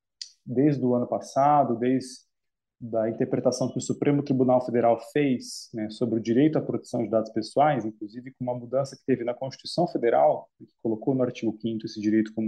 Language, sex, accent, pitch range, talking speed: Portuguese, male, Brazilian, 120-155 Hz, 190 wpm